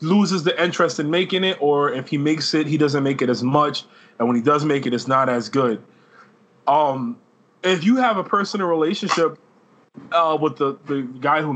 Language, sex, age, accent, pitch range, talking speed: English, male, 20-39, American, 140-185 Hz, 210 wpm